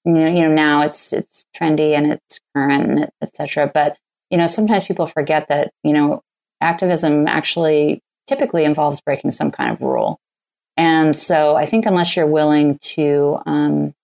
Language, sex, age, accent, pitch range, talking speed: English, female, 30-49, American, 150-170 Hz, 180 wpm